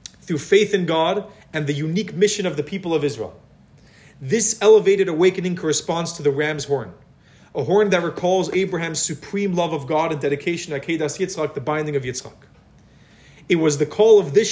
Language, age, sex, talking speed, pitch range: English, 30-49, male, 190 wpm, 145-185 Hz